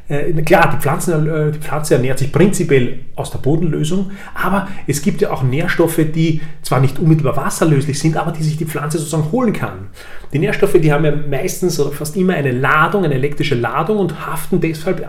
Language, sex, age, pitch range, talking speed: German, male, 30-49, 140-175 Hz, 190 wpm